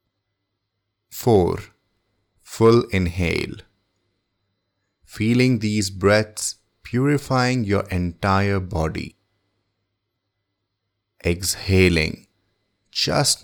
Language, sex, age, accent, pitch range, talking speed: English, male, 30-49, Indian, 95-105 Hz, 55 wpm